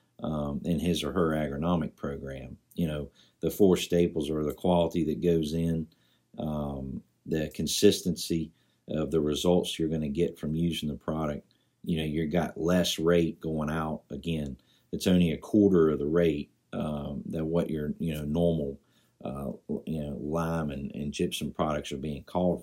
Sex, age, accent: male, 50-69, American